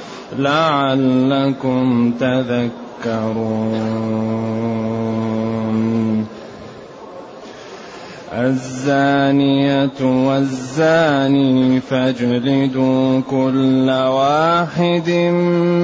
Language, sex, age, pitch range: Arabic, male, 20-39, 130-165 Hz